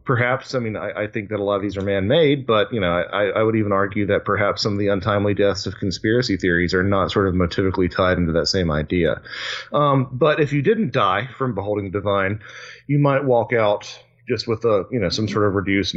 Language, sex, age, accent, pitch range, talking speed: English, male, 30-49, American, 95-125 Hz, 240 wpm